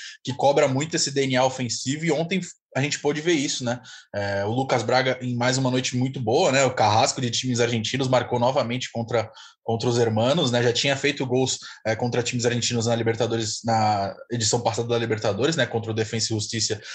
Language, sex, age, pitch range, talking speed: Portuguese, male, 20-39, 120-140 Hz, 205 wpm